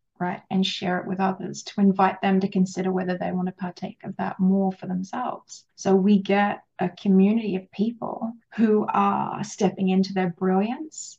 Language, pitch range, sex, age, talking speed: English, 190-210 Hz, female, 20-39, 180 wpm